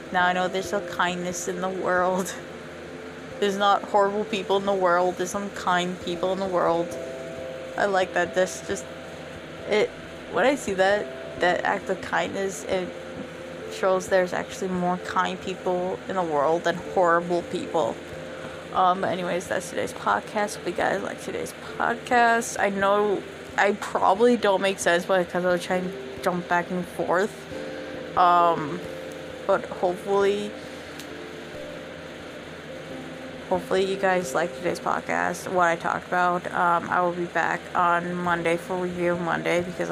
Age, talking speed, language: 20-39, 150 wpm, English